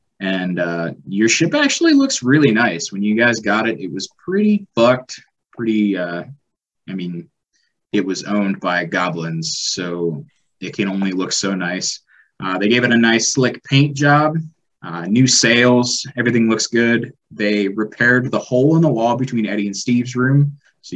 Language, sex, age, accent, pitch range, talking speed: English, male, 20-39, American, 100-130 Hz, 175 wpm